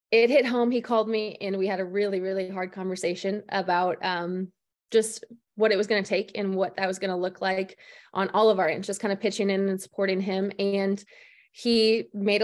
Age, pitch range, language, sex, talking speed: 20-39, 190-220 Hz, English, female, 220 wpm